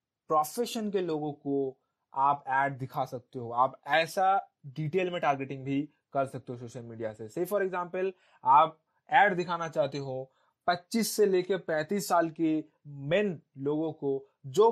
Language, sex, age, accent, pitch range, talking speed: Hindi, male, 20-39, native, 140-190 Hz, 160 wpm